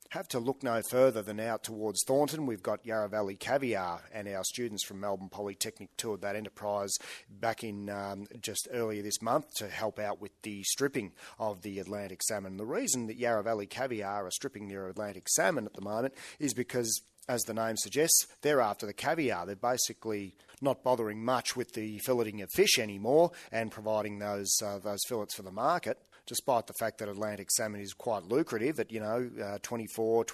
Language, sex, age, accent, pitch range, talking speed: English, male, 40-59, Australian, 100-120 Hz, 190 wpm